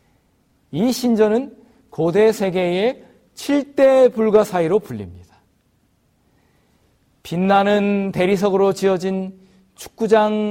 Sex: male